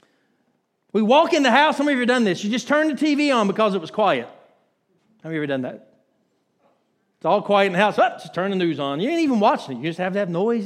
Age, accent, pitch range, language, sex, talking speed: 40-59, American, 160-250 Hz, English, male, 285 wpm